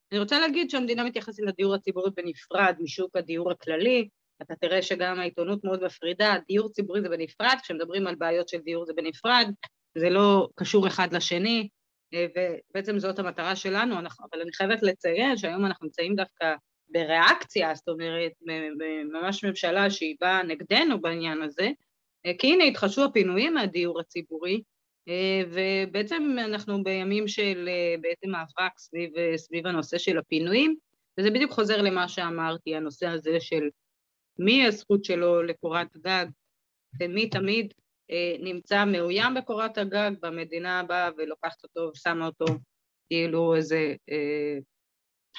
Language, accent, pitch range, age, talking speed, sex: Hebrew, native, 165-200 Hz, 30-49, 135 wpm, female